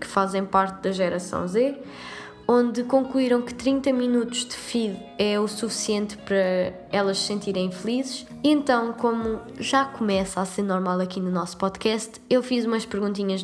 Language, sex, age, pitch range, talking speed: Portuguese, female, 20-39, 195-245 Hz, 160 wpm